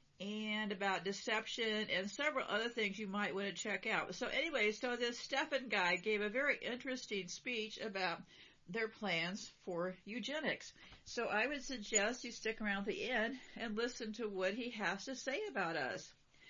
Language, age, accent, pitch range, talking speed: English, 50-69, American, 195-245 Hz, 175 wpm